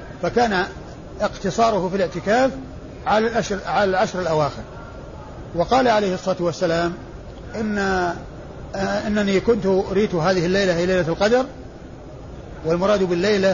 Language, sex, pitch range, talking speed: Arabic, male, 180-215 Hz, 105 wpm